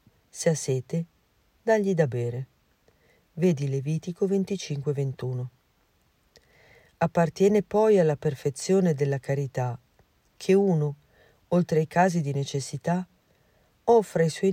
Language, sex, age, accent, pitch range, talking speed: Italian, female, 50-69, native, 135-180 Hz, 105 wpm